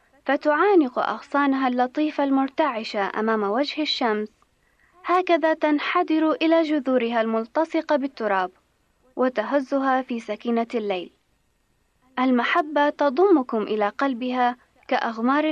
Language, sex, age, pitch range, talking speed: Arabic, female, 20-39, 230-305 Hz, 85 wpm